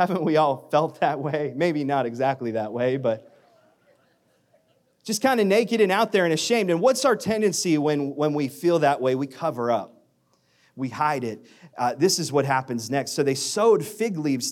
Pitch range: 130-205 Hz